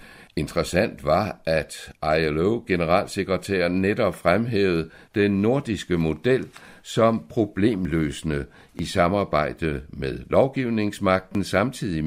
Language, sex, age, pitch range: Danish, male, 60-79, 80-110 Hz